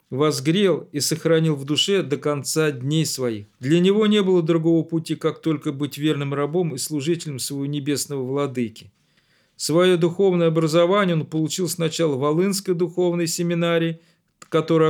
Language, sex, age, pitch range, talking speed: Russian, male, 40-59, 145-175 Hz, 145 wpm